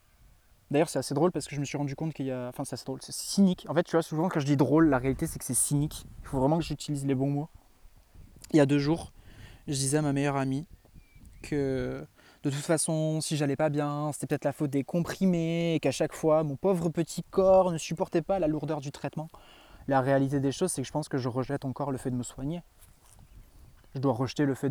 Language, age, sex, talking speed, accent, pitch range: French, 20-39, male, 255 wpm, French, 135-160 Hz